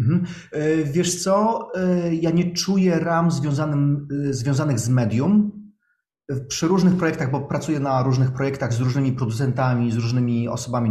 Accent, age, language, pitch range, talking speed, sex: native, 30-49, Polish, 120-150 Hz, 125 wpm, male